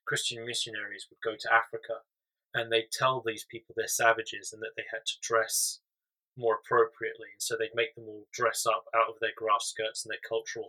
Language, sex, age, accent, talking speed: English, male, 20-39, British, 200 wpm